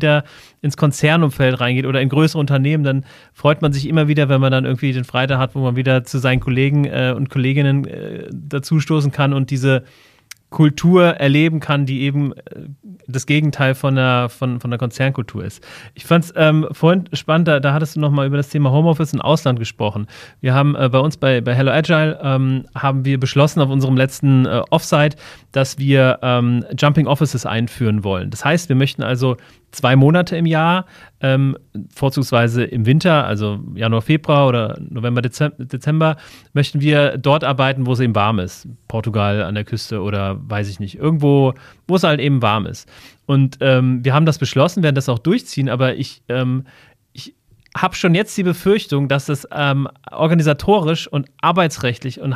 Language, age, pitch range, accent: German, 30-49, 125-150 Hz, German